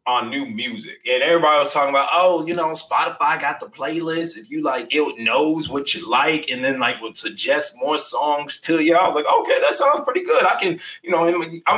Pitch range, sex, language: 155-220 Hz, male, English